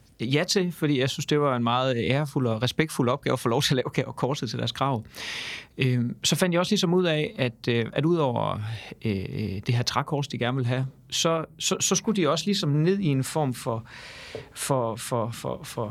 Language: Danish